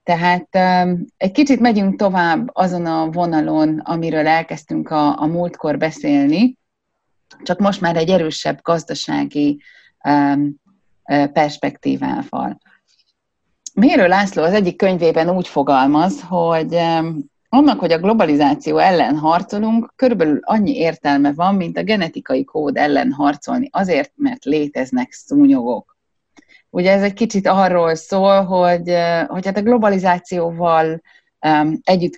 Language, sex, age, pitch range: Hungarian, female, 30-49, 155-225 Hz